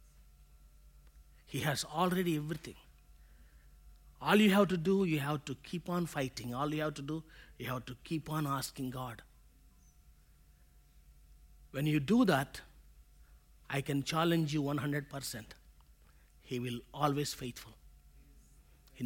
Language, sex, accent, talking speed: English, male, Indian, 130 wpm